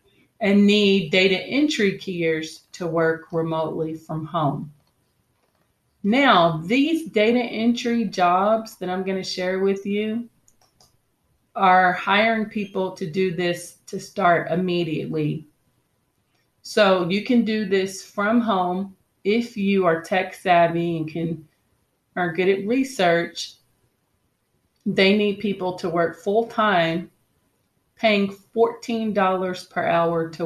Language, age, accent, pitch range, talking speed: English, 30-49, American, 170-210 Hz, 120 wpm